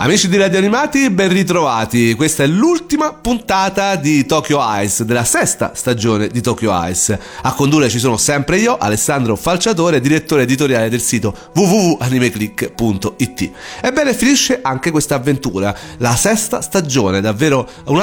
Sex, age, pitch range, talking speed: male, 40-59, 115-160 Hz, 140 wpm